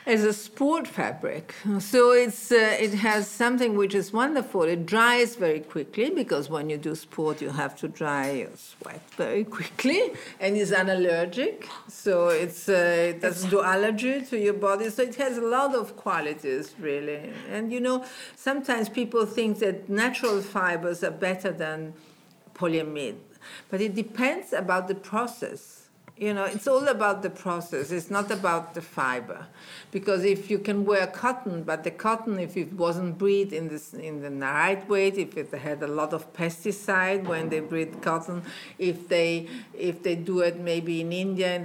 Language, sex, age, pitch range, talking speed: English, female, 50-69, 165-215 Hz, 175 wpm